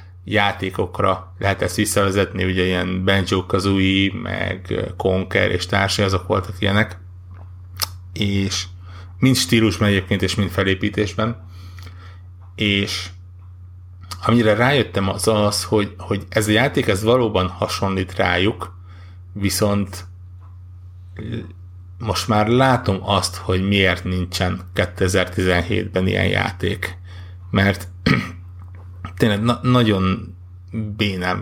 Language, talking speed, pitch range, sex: Hungarian, 95 wpm, 90-105 Hz, male